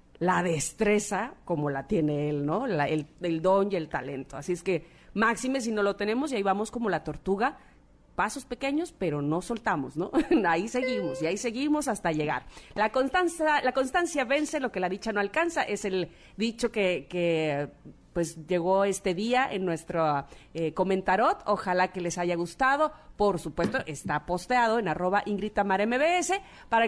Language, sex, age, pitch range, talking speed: Spanish, female, 40-59, 170-245 Hz, 175 wpm